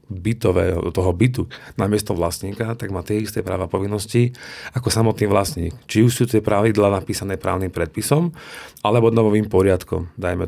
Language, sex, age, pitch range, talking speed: Slovak, male, 40-59, 90-110 Hz, 155 wpm